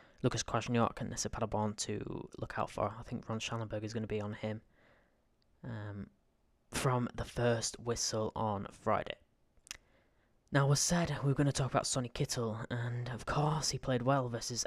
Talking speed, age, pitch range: 180 wpm, 10-29, 110-125 Hz